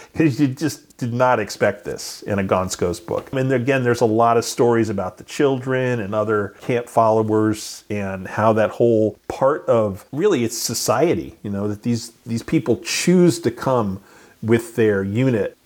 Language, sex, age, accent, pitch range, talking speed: English, male, 40-59, American, 105-125 Hz, 175 wpm